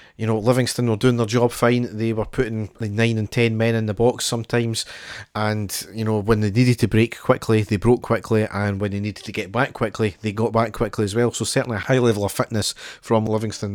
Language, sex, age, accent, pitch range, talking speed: English, male, 40-59, British, 110-125 Hz, 235 wpm